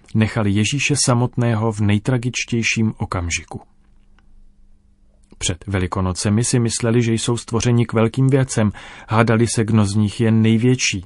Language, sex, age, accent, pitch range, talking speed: Czech, male, 40-59, native, 100-125 Hz, 125 wpm